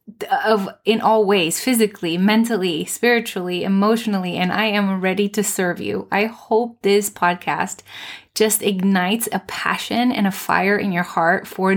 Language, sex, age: English, female, 20-39